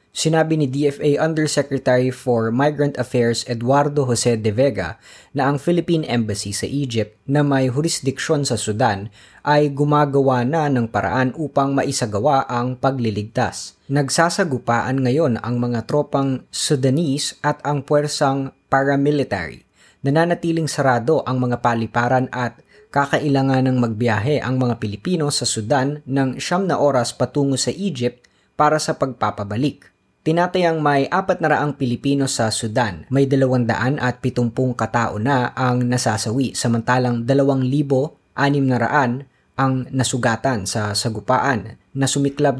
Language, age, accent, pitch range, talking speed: Filipino, 20-39, native, 120-145 Hz, 125 wpm